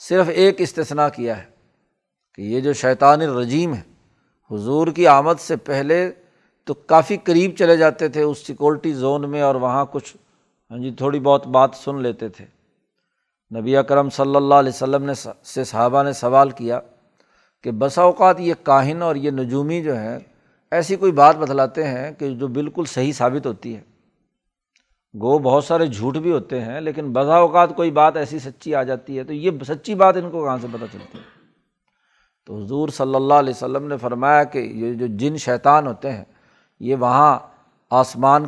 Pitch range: 130-160 Hz